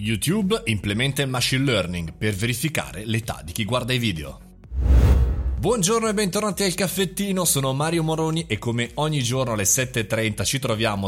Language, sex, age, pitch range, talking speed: Italian, male, 30-49, 100-140 Hz, 155 wpm